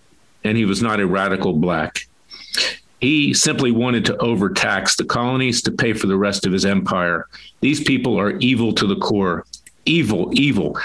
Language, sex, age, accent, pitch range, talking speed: English, male, 50-69, American, 100-135 Hz, 170 wpm